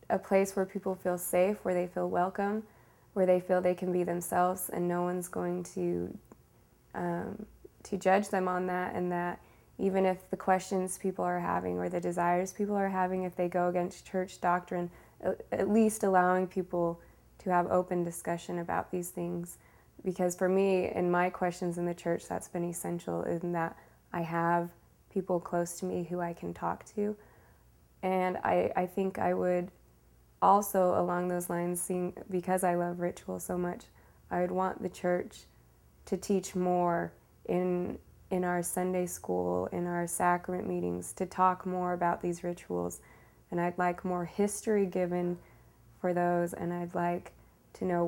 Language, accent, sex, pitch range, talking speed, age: English, American, female, 170-185 Hz, 170 wpm, 20-39